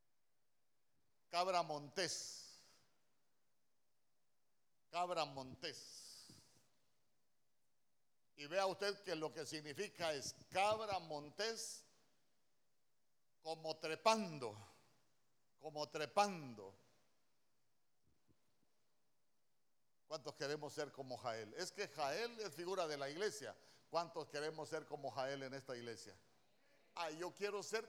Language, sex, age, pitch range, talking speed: Spanish, male, 50-69, 145-195 Hz, 95 wpm